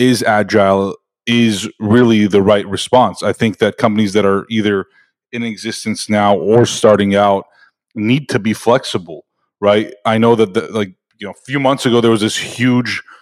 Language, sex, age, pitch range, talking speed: English, male, 30-49, 100-115 Hz, 175 wpm